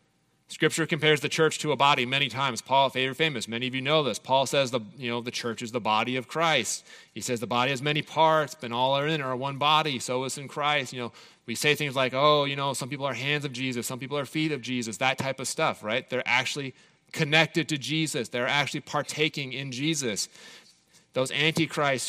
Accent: American